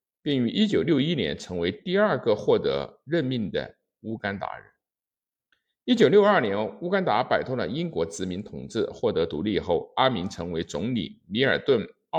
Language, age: Chinese, 50-69